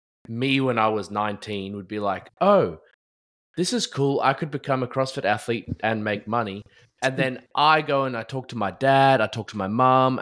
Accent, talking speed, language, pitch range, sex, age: Australian, 210 wpm, English, 95-115 Hz, male, 20-39